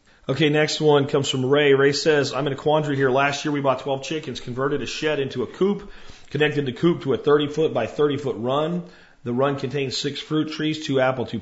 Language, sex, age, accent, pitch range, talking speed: English, male, 40-59, American, 120-140 Hz, 225 wpm